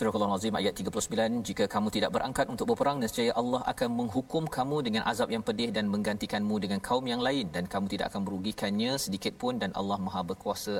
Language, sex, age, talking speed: Malayalam, male, 40-59, 190 wpm